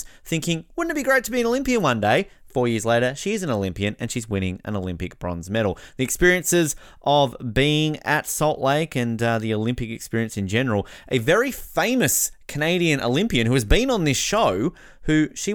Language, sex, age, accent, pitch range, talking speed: English, male, 20-39, Australian, 105-150 Hz, 200 wpm